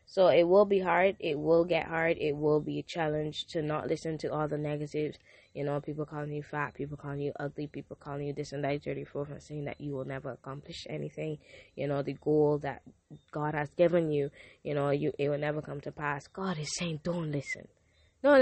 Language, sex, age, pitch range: Japanese, female, 20-39, 145-170 Hz